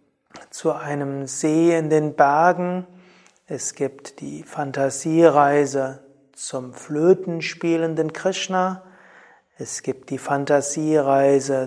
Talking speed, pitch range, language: 85 wpm, 145-180 Hz, German